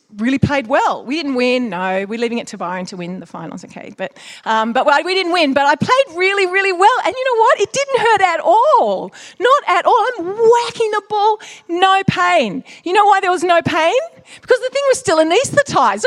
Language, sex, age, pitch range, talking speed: English, female, 40-59, 230-340 Hz, 225 wpm